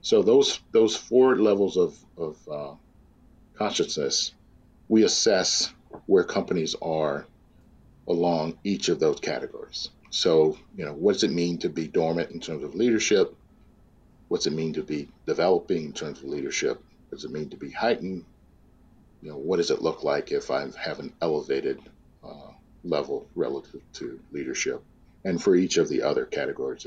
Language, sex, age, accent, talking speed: English, male, 50-69, American, 165 wpm